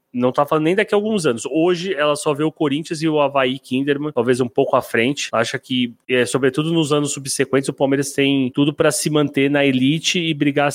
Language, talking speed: Portuguese, 235 wpm